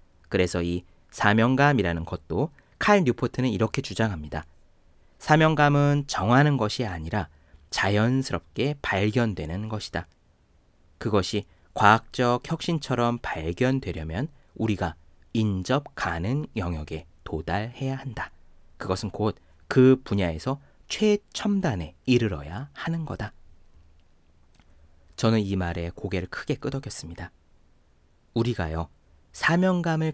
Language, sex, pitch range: Korean, male, 85-140 Hz